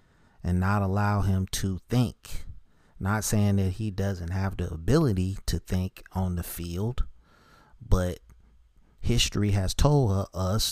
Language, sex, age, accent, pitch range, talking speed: English, male, 30-49, American, 90-105 Hz, 135 wpm